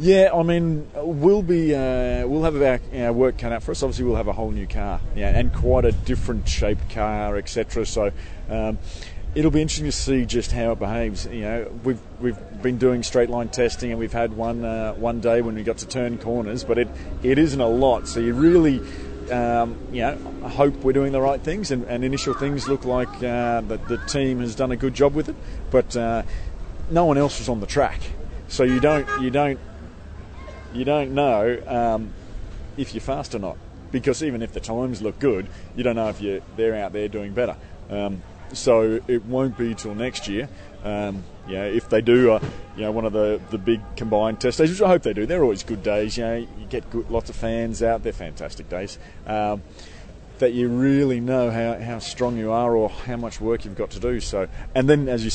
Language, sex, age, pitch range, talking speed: English, male, 30-49, 105-125 Hz, 225 wpm